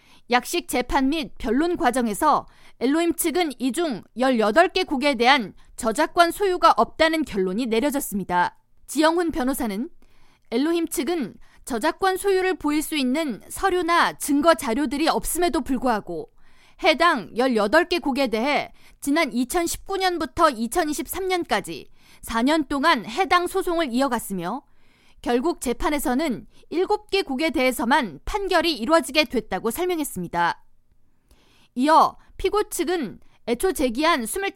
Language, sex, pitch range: Korean, female, 255-345 Hz